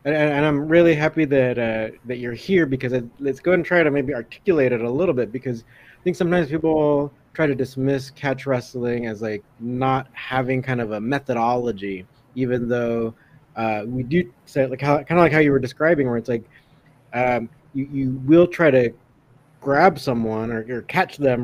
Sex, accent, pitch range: male, American, 125-145 Hz